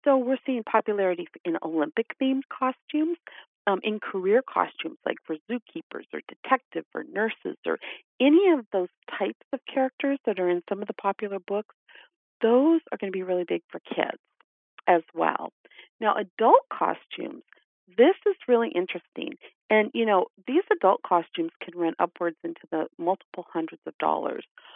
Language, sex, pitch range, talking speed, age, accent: English, female, 175-265 Hz, 160 wpm, 40-59, American